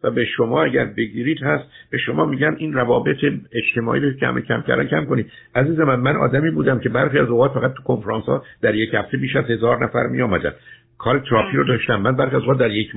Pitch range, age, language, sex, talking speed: 110-130 Hz, 60-79, Persian, male, 210 wpm